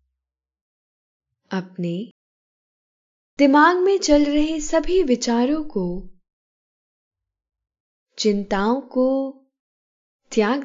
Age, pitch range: 10-29, 190-280 Hz